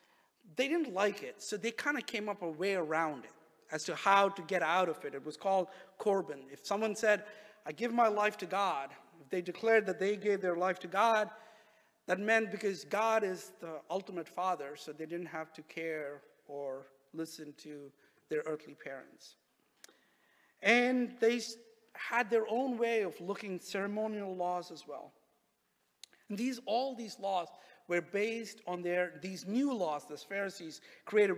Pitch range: 160-220 Hz